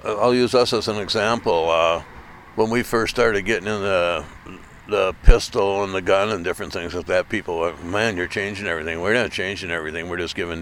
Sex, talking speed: male, 210 wpm